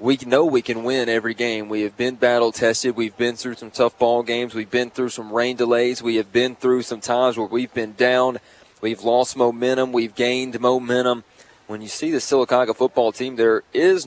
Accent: American